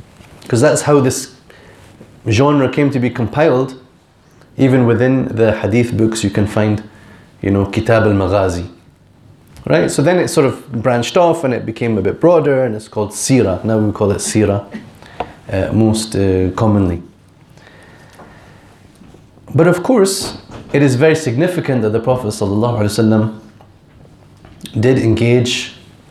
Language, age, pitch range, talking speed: English, 30-49, 105-135 Hz, 140 wpm